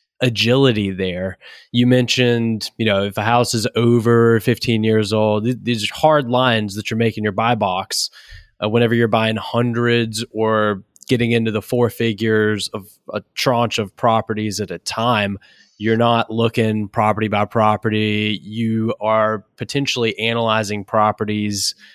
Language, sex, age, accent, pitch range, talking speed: English, male, 20-39, American, 110-120 Hz, 145 wpm